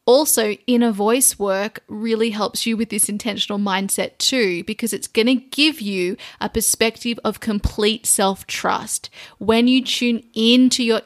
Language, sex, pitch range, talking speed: English, female, 210-250 Hz, 150 wpm